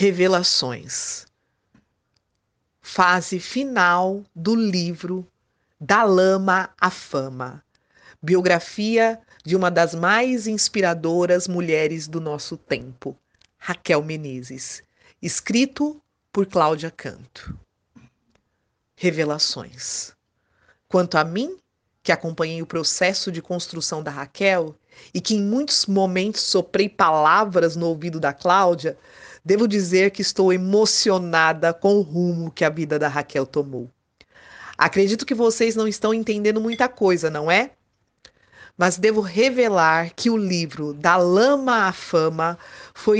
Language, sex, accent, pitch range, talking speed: Portuguese, female, Brazilian, 165-210 Hz, 115 wpm